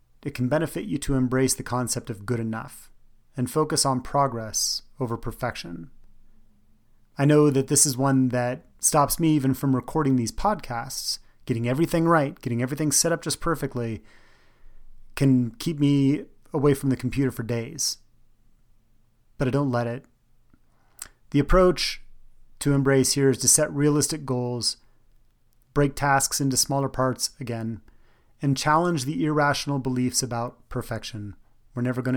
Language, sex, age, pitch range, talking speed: English, male, 30-49, 115-140 Hz, 150 wpm